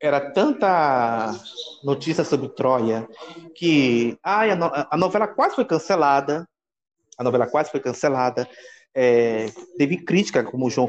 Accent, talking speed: Brazilian, 140 wpm